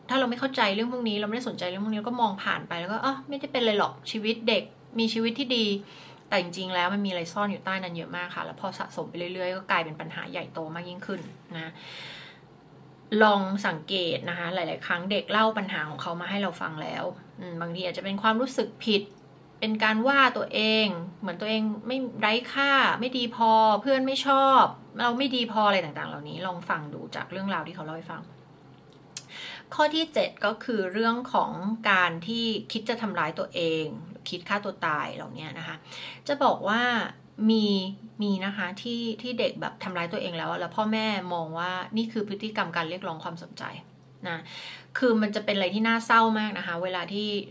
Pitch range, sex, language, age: 180-225 Hz, female, Thai, 20-39